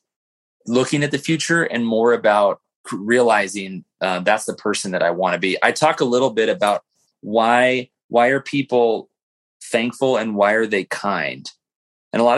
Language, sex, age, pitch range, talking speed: English, male, 30-49, 100-130 Hz, 175 wpm